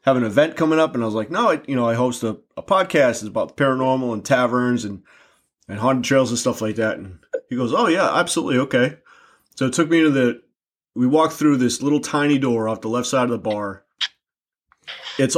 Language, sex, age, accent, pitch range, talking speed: English, male, 30-49, American, 115-135 Hz, 230 wpm